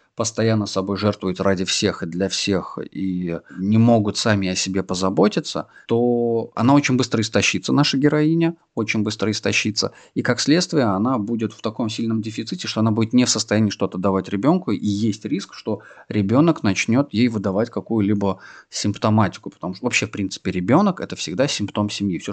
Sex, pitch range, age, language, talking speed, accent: male, 95-115 Hz, 30-49, Russian, 170 wpm, native